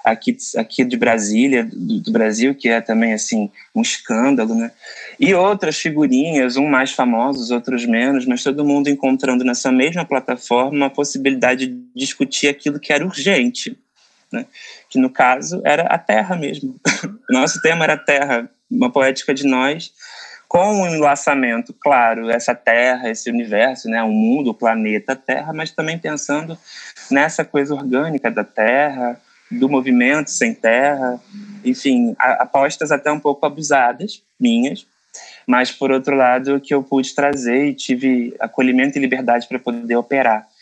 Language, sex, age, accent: Portuguese, male, 20-39, Brazilian